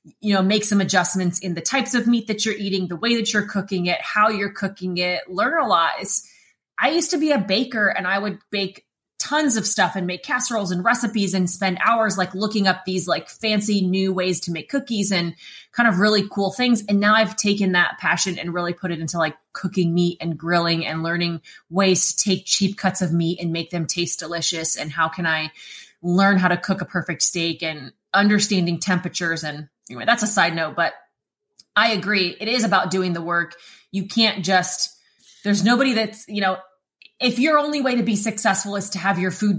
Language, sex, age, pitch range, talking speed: English, female, 20-39, 170-205 Hz, 215 wpm